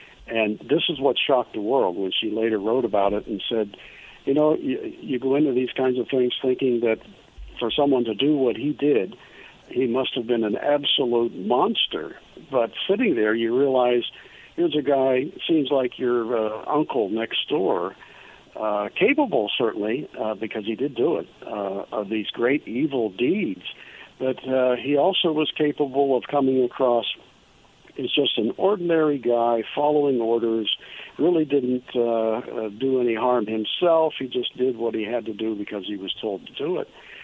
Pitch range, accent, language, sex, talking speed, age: 110-130 Hz, American, English, male, 175 wpm, 60-79